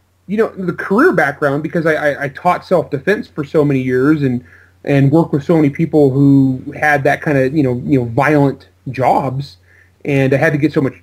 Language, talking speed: English, 220 wpm